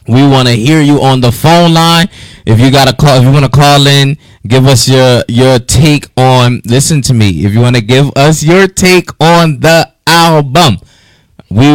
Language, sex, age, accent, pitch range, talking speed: English, male, 20-39, American, 120-150 Hz, 210 wpm